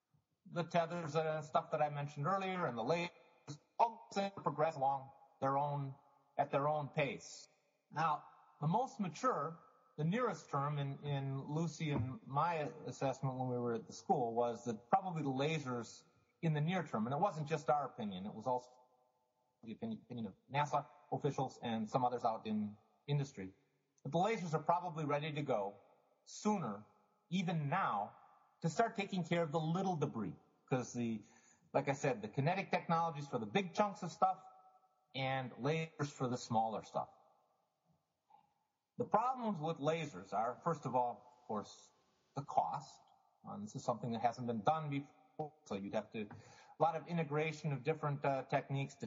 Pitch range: 135-170 Hz